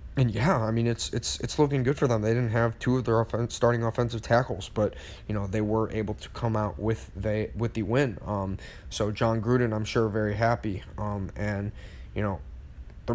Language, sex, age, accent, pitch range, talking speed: English, male, 20-39, American, 100-115 Hz, 220 wpm